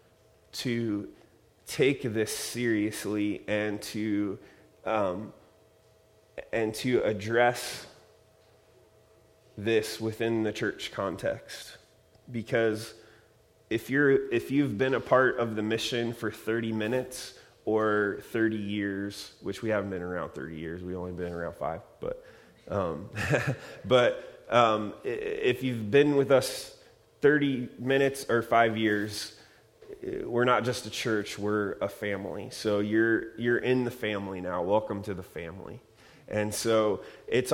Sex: male